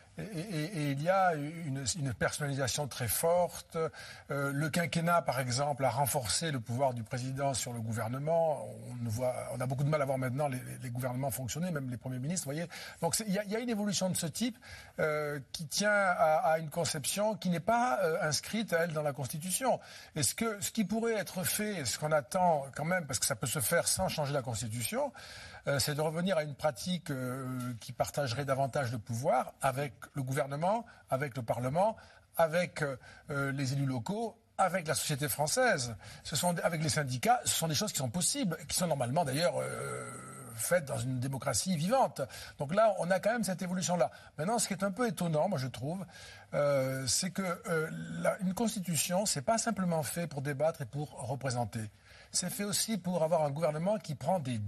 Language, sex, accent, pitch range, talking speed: French, male, French, 130-180 Hz, 205 wpm